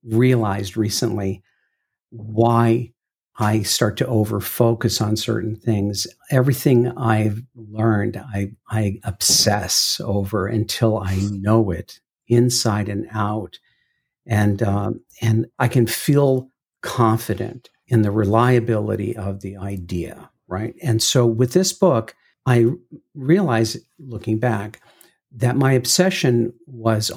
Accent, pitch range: American, 100-120 Hz